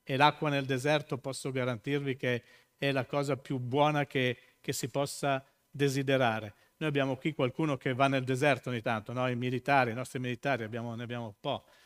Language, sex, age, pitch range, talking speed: Italian, male, 50-69, 125-155 Hz, 180 wpm